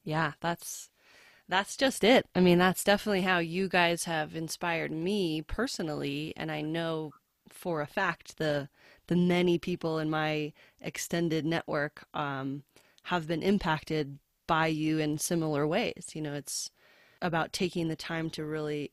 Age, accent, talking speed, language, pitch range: 20-39, American, 150 wpm, English, 150-175 Hz